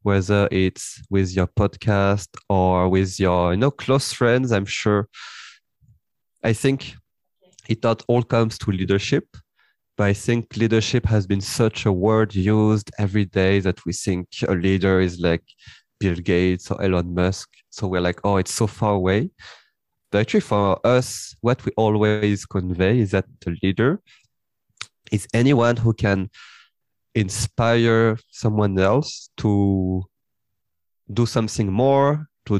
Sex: male